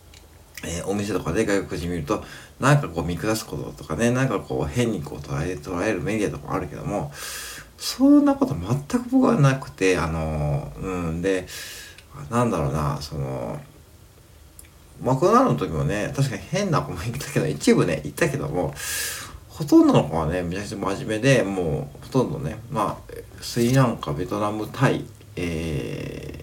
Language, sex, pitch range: Japanese, male, 85-135 Hz